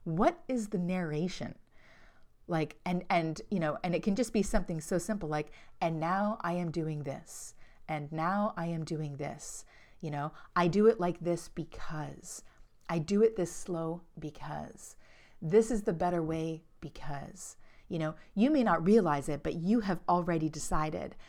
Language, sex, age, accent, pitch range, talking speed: English, female, 30-49, American, 160-205 Hz, 175 wpm